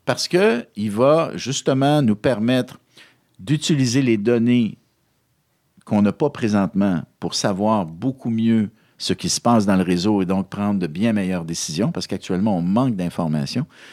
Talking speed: 155 wpm